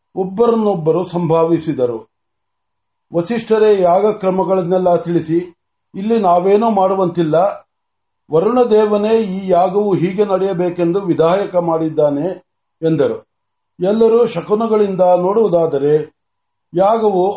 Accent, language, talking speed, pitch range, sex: native, Marathi, 35 wpm, 170-215 Hz, male